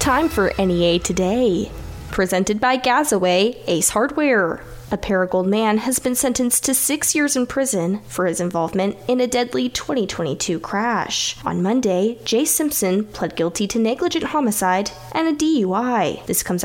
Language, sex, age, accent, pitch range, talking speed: English, female, 10-29, American, 185-295 Hz, 150 wpm